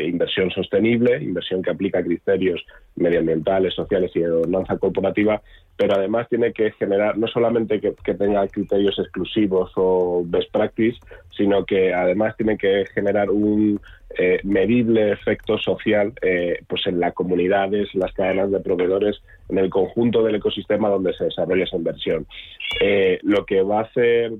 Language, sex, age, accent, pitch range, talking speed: Spanish, male, 30-49, Spanish, 100-120 Hz, 155 wpm